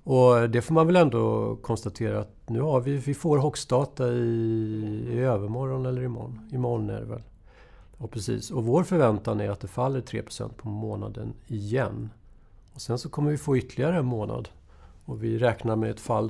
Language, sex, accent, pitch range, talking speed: Swedish, male, native, 105-130 Hz, 195 wpm